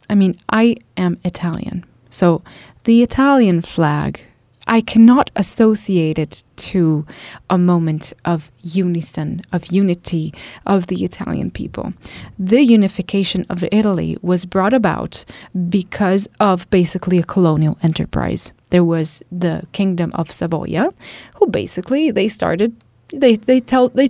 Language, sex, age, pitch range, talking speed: English, female, 20-39, 175-225 Hz, 120 wpm